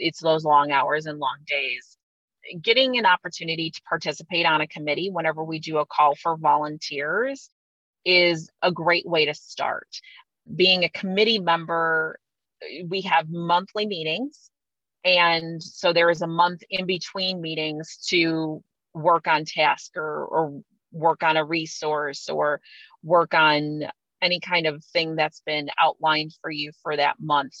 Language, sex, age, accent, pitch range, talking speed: English, female, 30-49, American, 155-175 Hz, 150 wpm